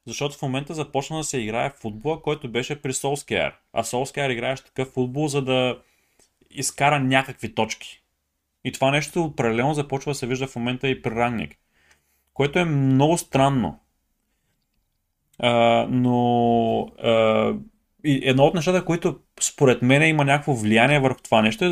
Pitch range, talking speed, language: 115-145 Hz, 155 wpm, Bulgarian